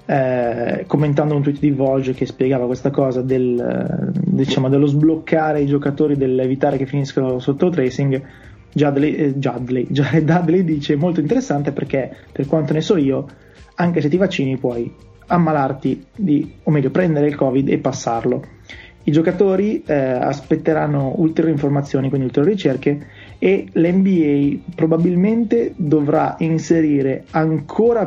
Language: Italian